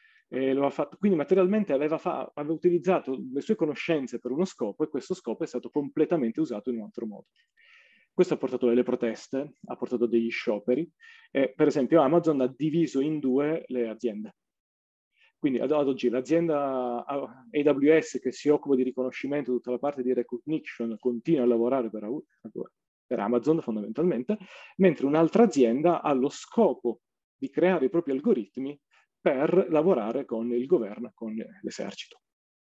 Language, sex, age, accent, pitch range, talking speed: Italian, male, 40-59, native, 130-175 Hz, 155 wpm